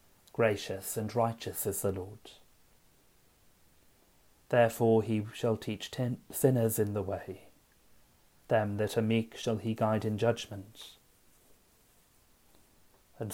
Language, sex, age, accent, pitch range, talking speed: English, male, 30-49, British, 100-115 Hz, 110 wpm